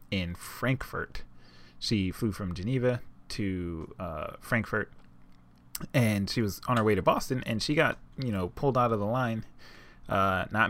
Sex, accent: male, American